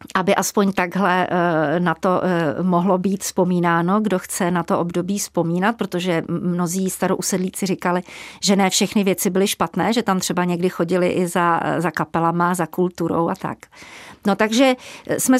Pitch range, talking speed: 175-205 Hz, 155 wpm